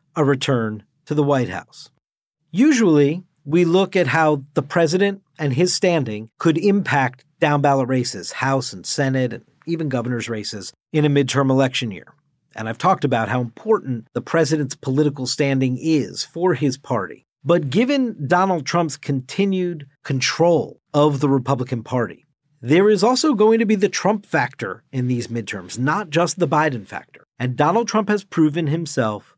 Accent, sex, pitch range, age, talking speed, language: American, male, 130-175 Hz, 50-69, 160 wpm, English